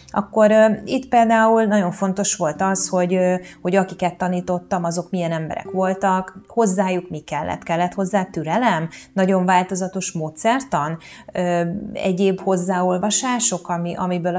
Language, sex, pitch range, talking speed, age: Hungarian, female, 170-210 Hz, 130 wpm, 30-49